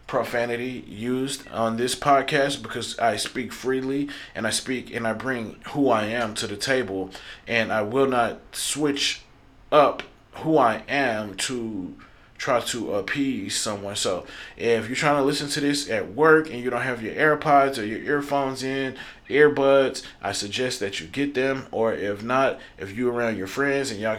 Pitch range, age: 105-135 Hz, 30-49